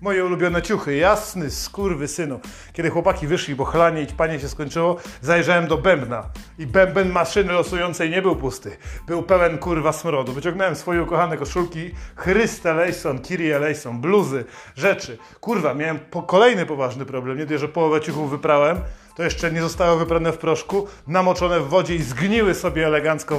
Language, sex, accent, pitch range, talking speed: Polish, male, native, 160-200 Hz, 160 wpm